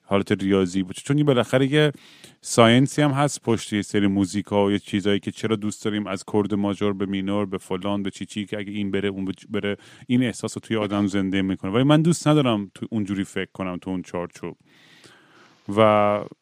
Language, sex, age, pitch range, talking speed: Persian, male, 30-49, 100-145 Hz, 200 wpm